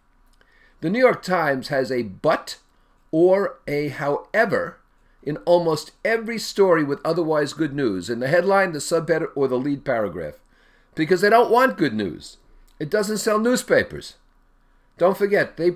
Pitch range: 145-195 Hz